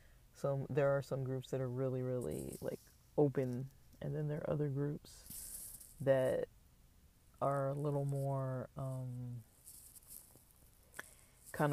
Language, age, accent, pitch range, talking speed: English, 30-49, American, 130-145 Hz, 120 wpm